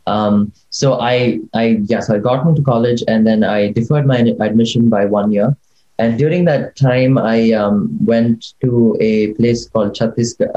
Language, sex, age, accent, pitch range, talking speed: Hindi, male, 20-39, native, 110-125 Hz, 180 wpm